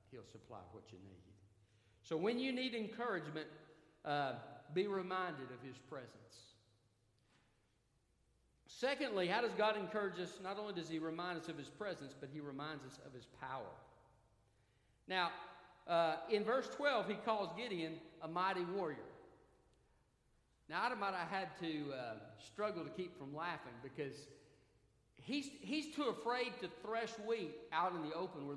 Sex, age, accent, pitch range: male, 50-69, American, 130-205 Hz